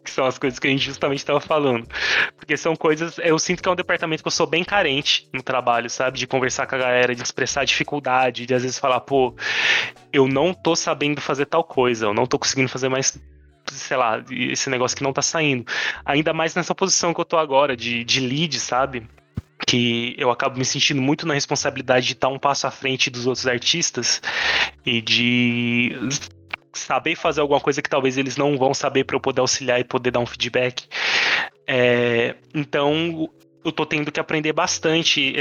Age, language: 20-39, Portuguese